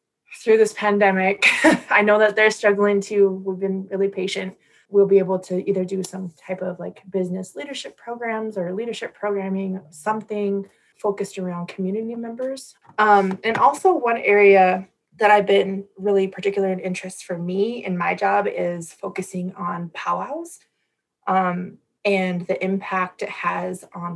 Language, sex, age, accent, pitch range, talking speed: English, female, 20-39, American, 190-225 Hz, 155 wpm